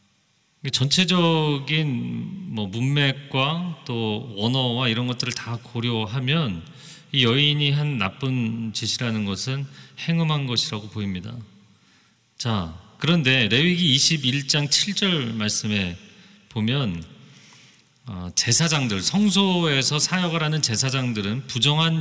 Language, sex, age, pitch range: Korean, male, 40-59, 110-155 Hz